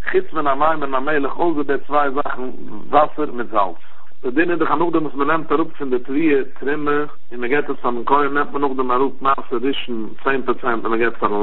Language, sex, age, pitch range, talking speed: English, male, 50-69, 125-150 Hz, 95 wpm